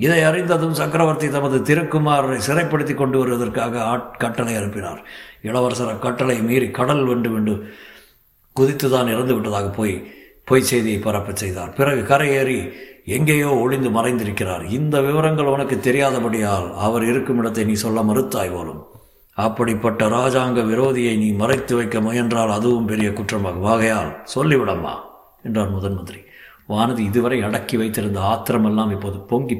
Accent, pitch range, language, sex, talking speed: native, 105-145 Hz, Tamil, male, 120 wpm